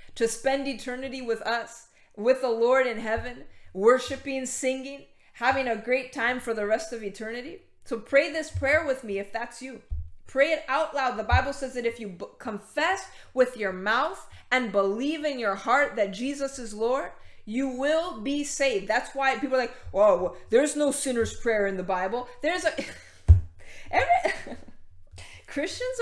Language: English